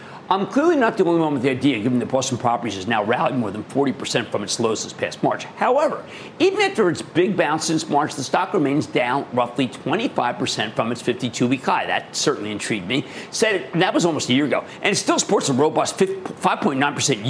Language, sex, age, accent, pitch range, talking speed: English, male, 50-69, American, 145-195 Hz, 215 wpm